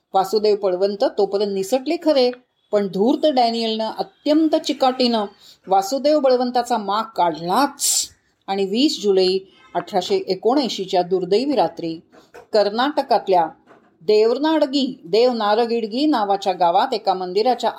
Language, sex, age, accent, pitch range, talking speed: Marathi, female, 30-49, native, 190-255 Hz, 90 wpm